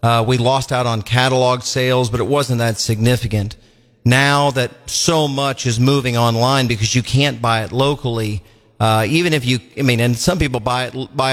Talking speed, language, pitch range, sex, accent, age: 195 wpm, English, 120-135 Hz, male, American, 40-59